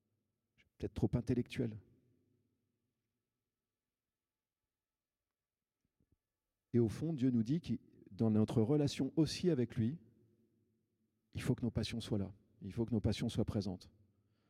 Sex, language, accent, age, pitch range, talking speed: male, French, French, 40-59, 110-130 Hz, 125 wpm